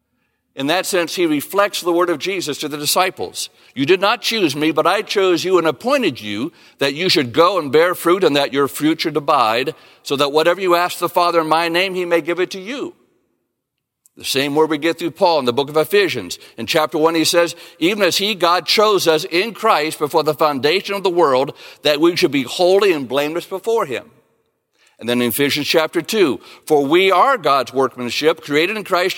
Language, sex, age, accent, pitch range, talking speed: English, male, 60-79, American, 135-185 Hz, 220 wpm